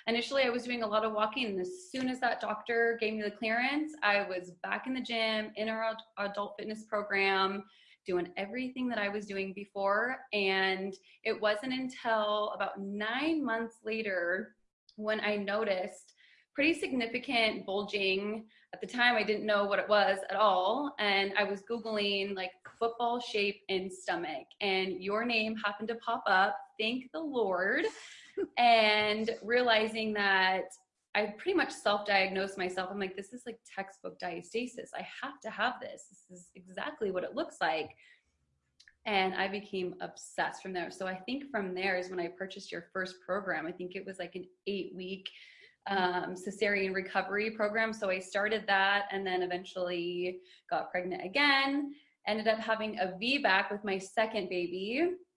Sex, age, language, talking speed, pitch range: female, 20-39, English, 170 wpm, 190-230 Hz